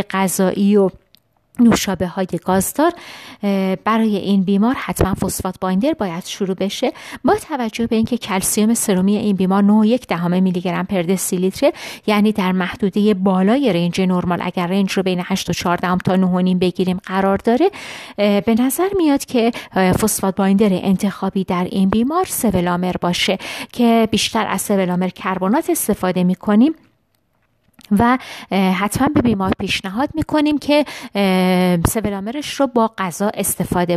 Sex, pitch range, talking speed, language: female, 190-230 Hz, 130 wpm, Persian